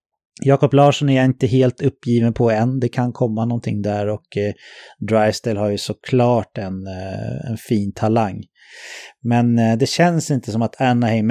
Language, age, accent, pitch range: English, 30-49, Swedish, 110-135 Hz